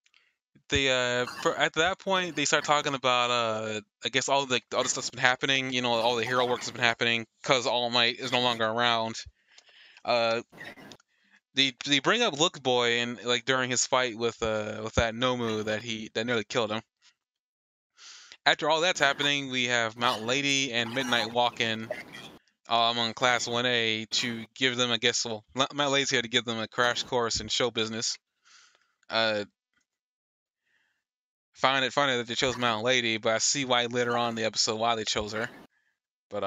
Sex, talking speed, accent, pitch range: male, 190 wpm, American, 115-145 Hz